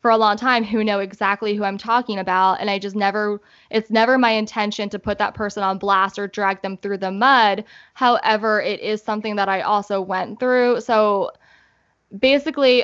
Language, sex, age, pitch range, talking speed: English, female, 10-29, 200-235 Hz, 195 wpm